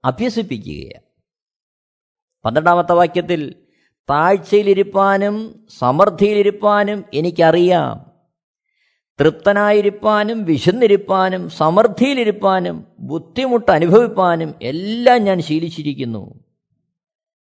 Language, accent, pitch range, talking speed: Malayalam, native, 135-225 Hz, 50 wpm